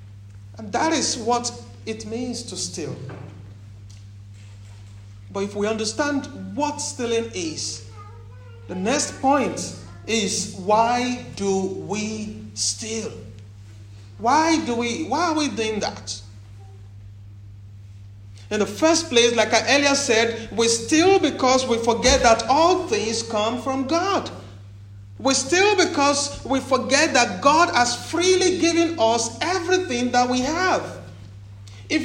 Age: 50-69